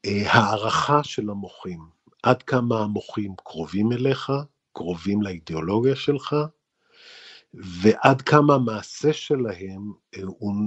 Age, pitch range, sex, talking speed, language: 50-69, 100-140 Hz, male, 90 wpm, Hebrew